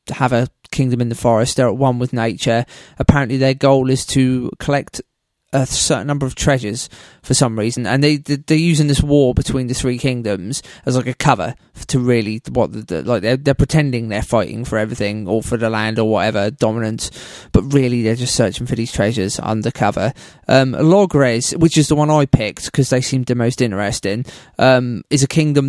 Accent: British